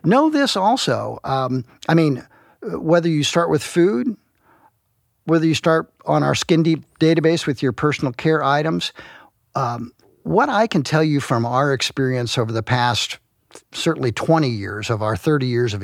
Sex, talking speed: male, 165 wpm